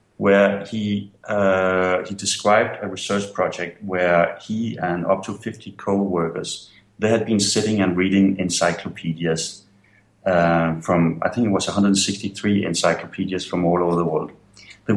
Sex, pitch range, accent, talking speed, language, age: male, 90-105 Hz, Danish, 145 wpm, English, 30-49